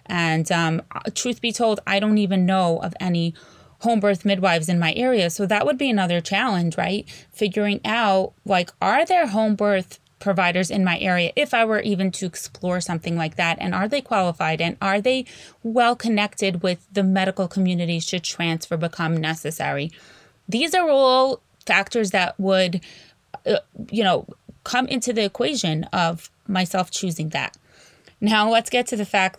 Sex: female